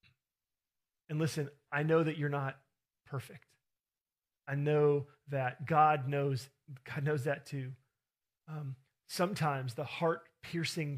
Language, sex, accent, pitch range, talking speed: English, male, American, 125-150 Hz, 115 wpm